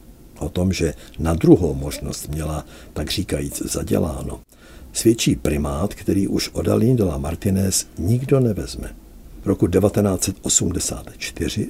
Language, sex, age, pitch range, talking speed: Czech, male, 60-79, 80-105 Hz, 115 wpm